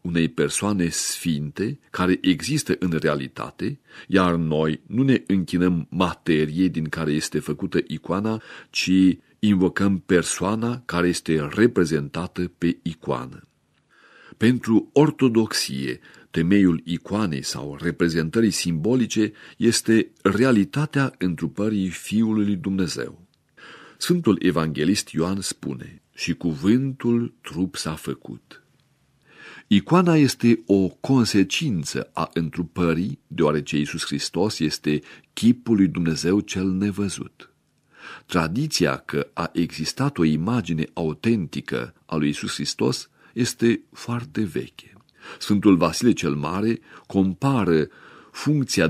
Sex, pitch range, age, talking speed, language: male, 80-110 Hz, 40-59, 100 wpm, Romanian